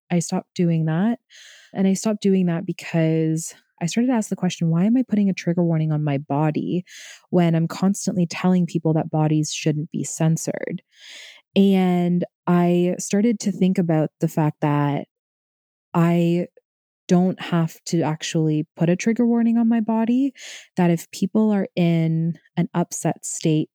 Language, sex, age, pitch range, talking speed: English, female, 20-39, 155-190 Hz, 165 wpm